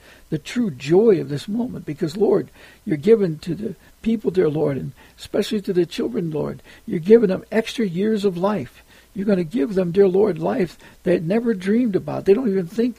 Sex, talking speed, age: male, 210 wpm, 60-79